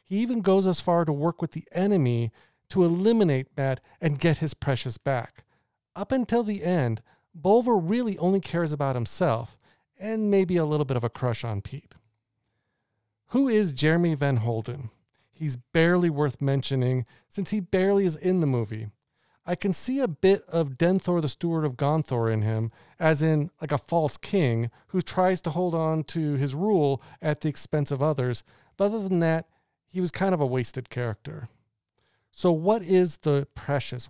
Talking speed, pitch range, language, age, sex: 180 wpm, 125-180 Hz, English, 40-59, male